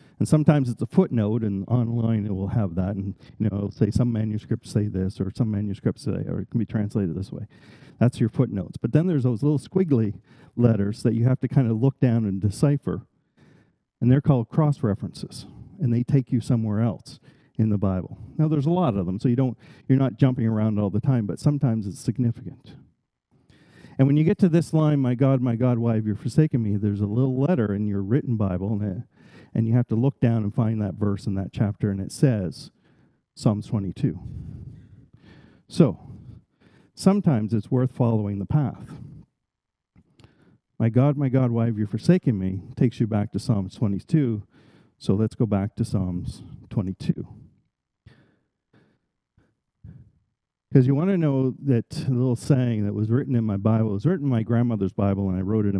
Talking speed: 195 wpm